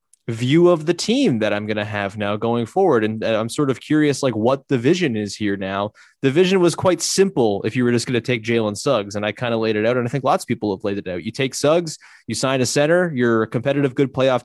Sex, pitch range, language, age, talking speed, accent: male, 110-135 Hz, English, 20-39, 280 wpm, American